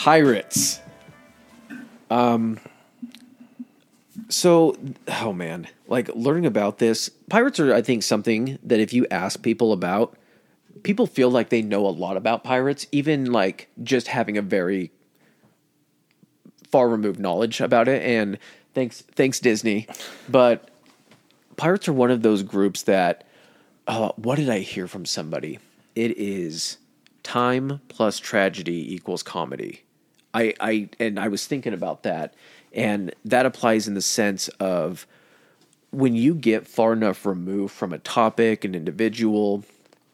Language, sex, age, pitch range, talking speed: English, male, 30-49, 105-130 Hz, 140 wpm